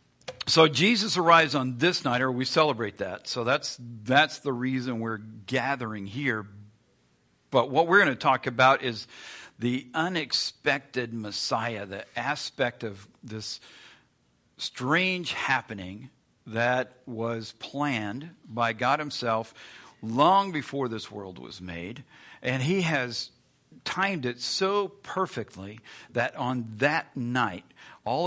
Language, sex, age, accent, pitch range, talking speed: English, male, 50-69, American, 115-145 Hz, 125 wpm